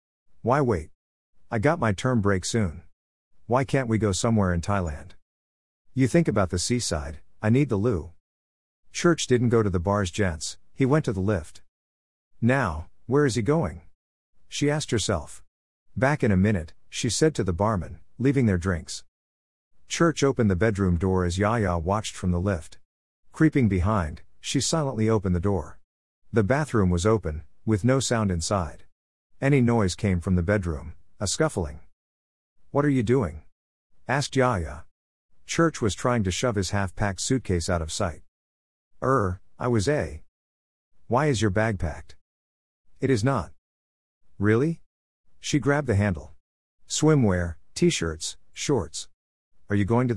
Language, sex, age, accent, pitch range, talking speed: English, male, 50-69, American, 80-120 Hz, 155 wpm